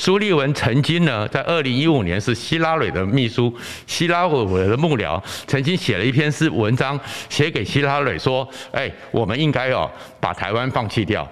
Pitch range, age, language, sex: 110-145 Hz, 60-79, Chinese, male